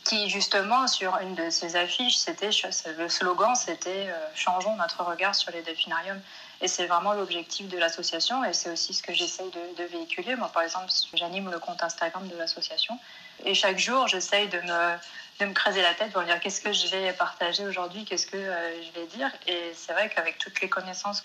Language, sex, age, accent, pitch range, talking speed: French, female, 20-39, French, 170-200 Hz, 205 wpm